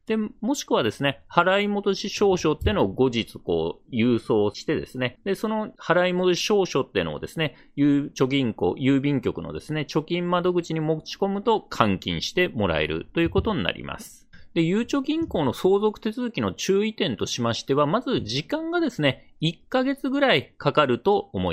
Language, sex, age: Japanese, male, 40-59